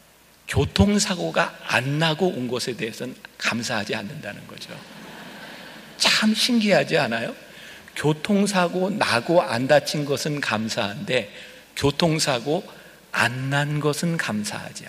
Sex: male